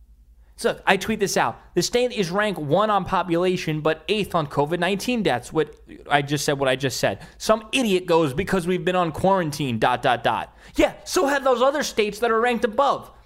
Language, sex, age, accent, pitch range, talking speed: English, male, 20-39, American, 125-210 Hz, 210 wpm